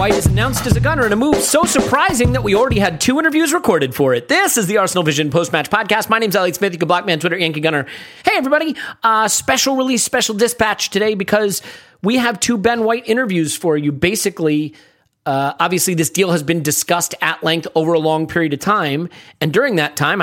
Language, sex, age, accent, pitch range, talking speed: English, male, 40-59, American, 160-210 Hz, 225 wpm